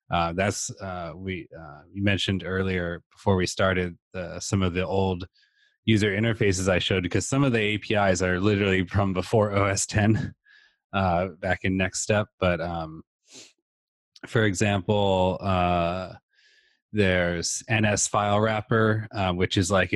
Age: 30-49